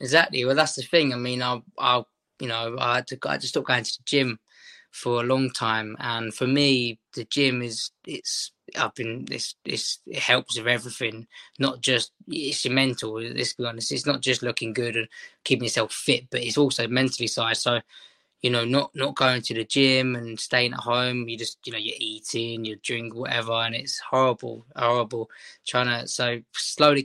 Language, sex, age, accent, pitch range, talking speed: English, male, 20-39, British, 115-130 Hz, 200 wpm